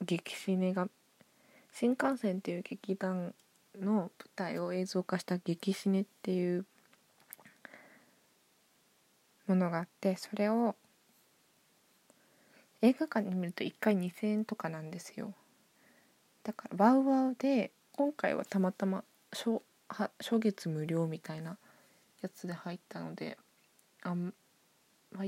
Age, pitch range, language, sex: 20-39, 175-220 Hz, Japanese, female